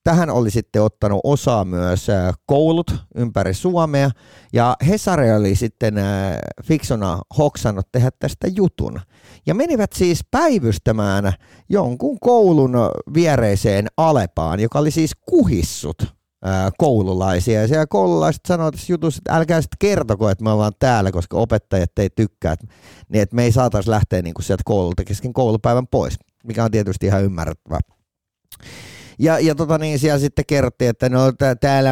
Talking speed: 140 wpm